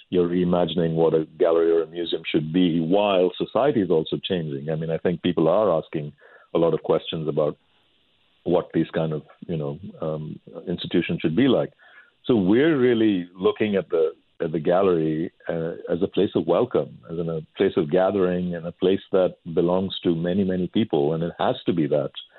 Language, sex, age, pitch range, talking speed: English, male, 50-69, 85-100 Hz, 200 wpm